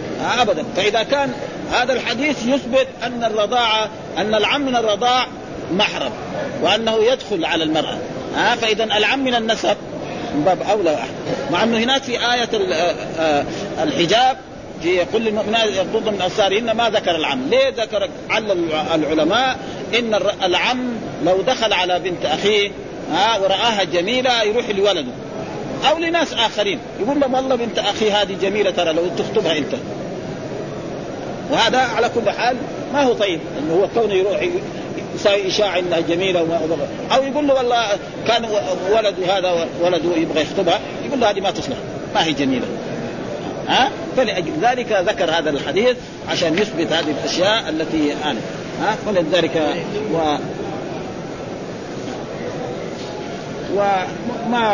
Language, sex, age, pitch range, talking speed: Arabic, male, 40-59, 185-245 Hz, 130 wpm